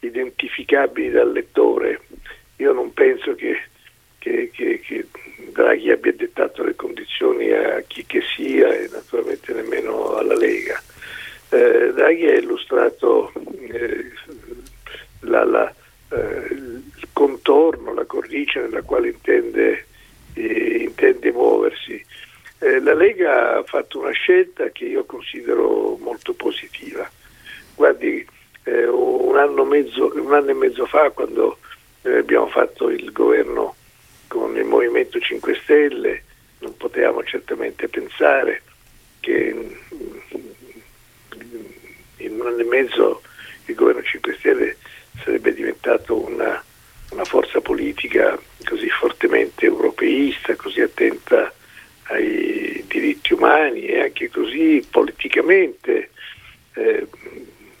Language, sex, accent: Italian, male, native